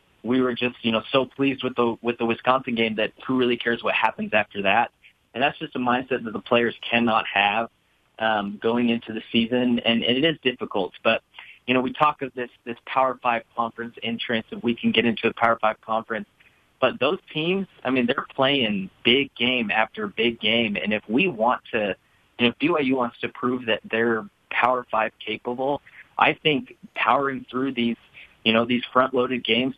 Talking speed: 205 wpm